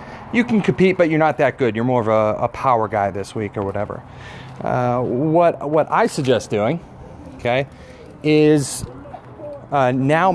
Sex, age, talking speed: male, 30-49, 170 wpm